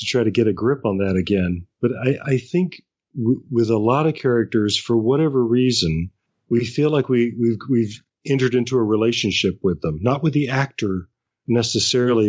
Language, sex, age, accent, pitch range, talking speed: English, male, 40-59, American, 100-125 Hz, 180 wpm